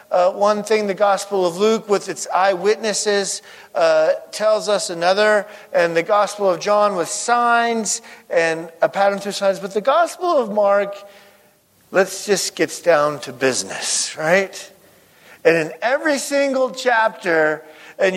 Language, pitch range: English, 170-225 Hz